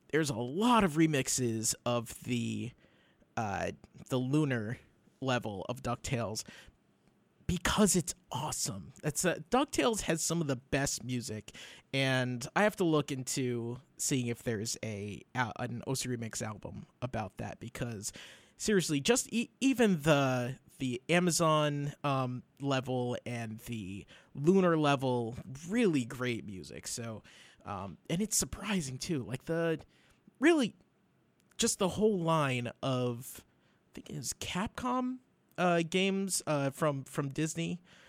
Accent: American